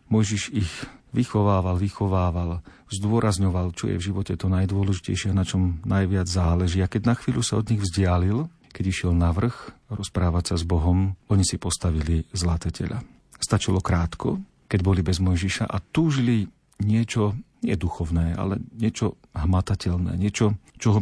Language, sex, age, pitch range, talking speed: Slovak, male, 40-59, 90-110 Hz, 150 wpm